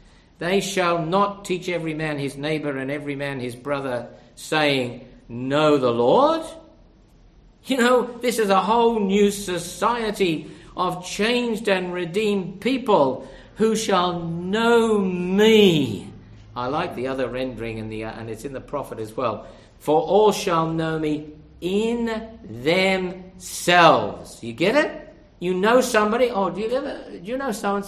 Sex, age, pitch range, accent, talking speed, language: male, 50-69, 145-210 Hz, British, 155 wpm, English